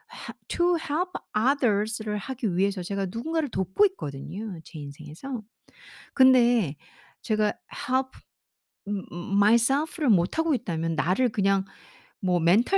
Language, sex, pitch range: Korean, female, 175-230 Hz